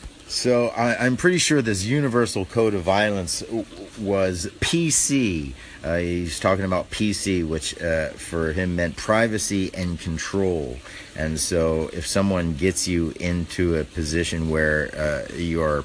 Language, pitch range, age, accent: English, 75-95 Hz, 50-69, American